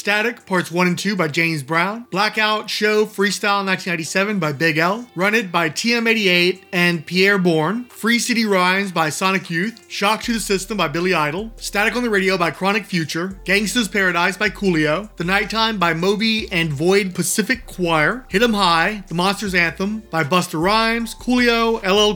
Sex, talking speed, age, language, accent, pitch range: male, 175 wpm, 30-49, English, American, 175-210 Hz